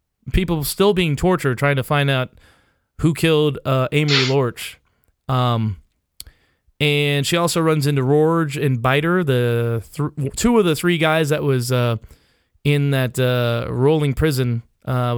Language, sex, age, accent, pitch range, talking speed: English, male, 20-39, American, 125-165 Hz, 150 wpm